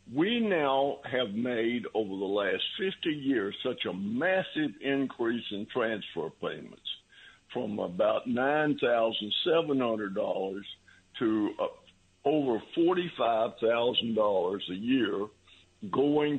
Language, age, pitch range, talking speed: English, 60-79, 105-175 Hz, 95 wpm